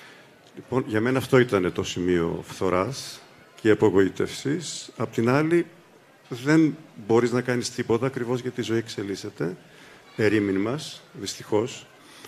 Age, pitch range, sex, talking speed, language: 50-69, 105-130 Hz, male, 125 wpm, Greek